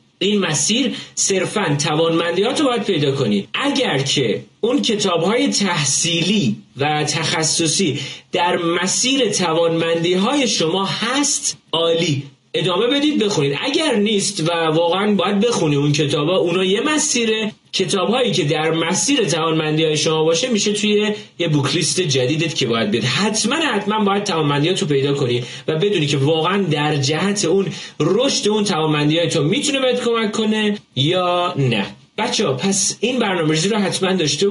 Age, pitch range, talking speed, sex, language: 30-49, 150-210 Hz, 145 wpm, male, Persian